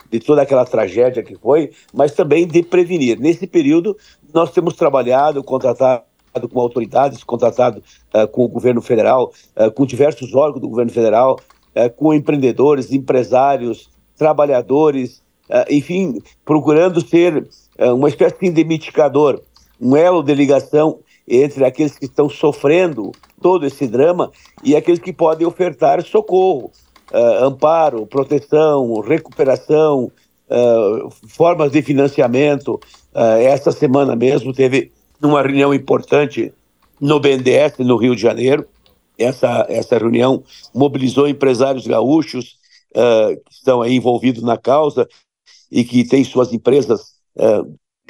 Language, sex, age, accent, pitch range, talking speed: Portuguese, male, 60-79, Brazilian, 125-160 Hz, 125 wpm